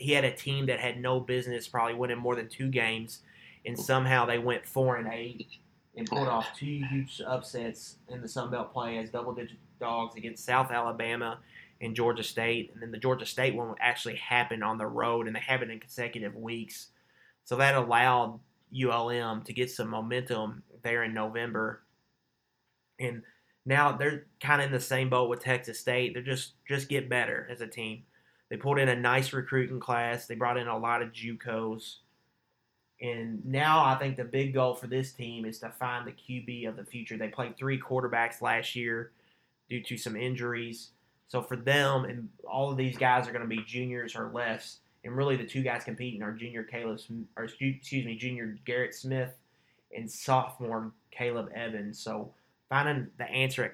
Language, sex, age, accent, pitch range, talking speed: English, male, 30-49, American, 115-130 Hz, 190 wpm